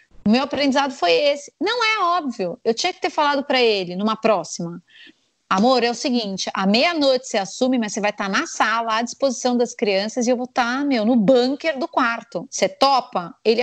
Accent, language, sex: Brazilian, Portuguese, female